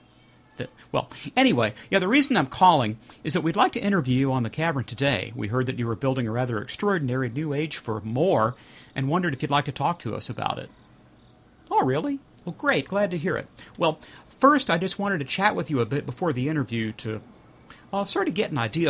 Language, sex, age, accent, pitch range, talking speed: English, male, 40-59, American, 115-175 Hz, 230 wpm